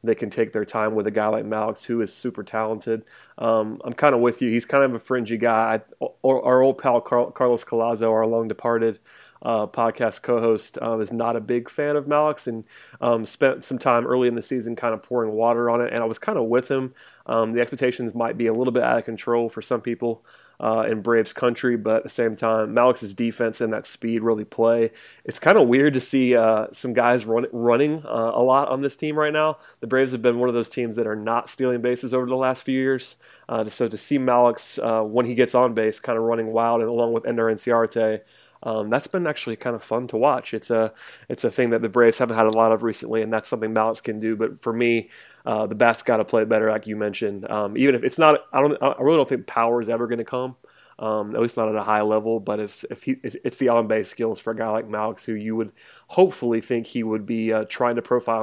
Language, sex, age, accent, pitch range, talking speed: English, male, 30-49, American, 110-125 Hz, 250 wpm